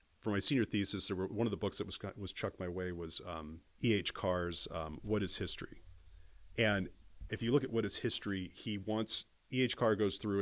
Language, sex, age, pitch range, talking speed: English, male, 40-59, 90-115 Hz, 230 wpm